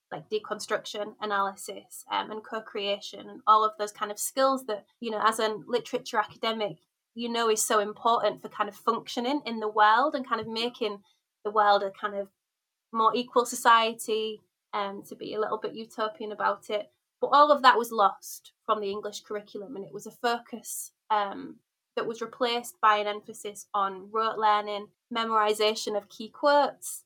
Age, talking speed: 20-39, 185 wpm